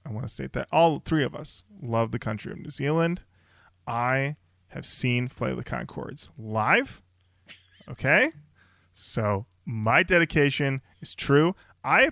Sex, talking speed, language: male, 145 wpm, English